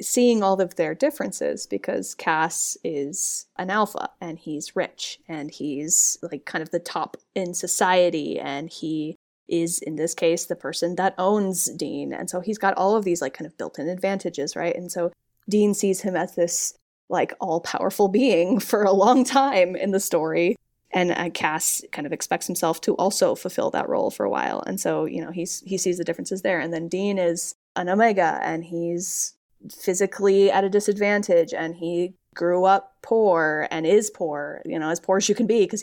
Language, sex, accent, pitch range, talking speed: English, female, American, 175-220 Hz, 195 wpm